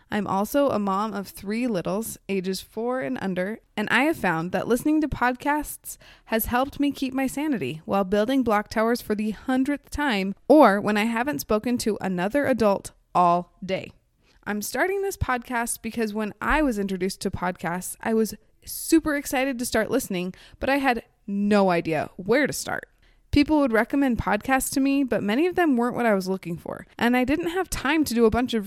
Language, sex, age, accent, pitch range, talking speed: English, female, 20-39, American, 195-265 Hz, 200 wpm